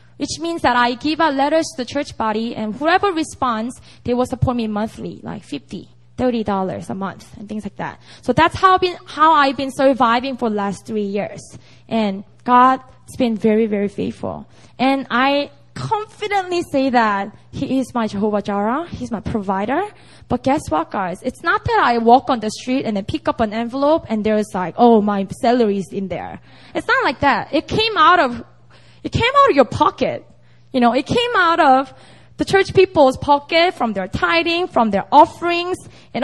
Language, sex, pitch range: English, female, 215-310 Hz